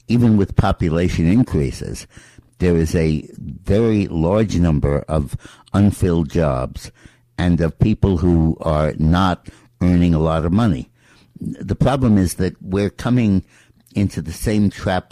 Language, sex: English, male